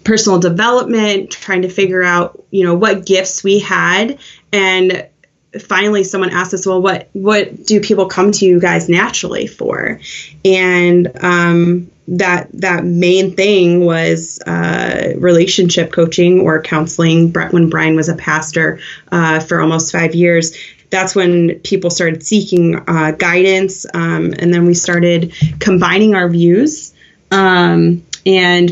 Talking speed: 145 wpm